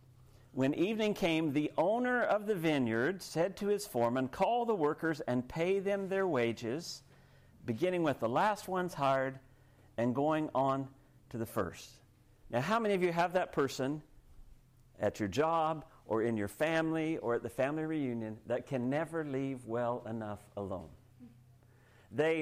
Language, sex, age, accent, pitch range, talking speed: English, male, 50-69, American, 125-175 Hz, 160 wpm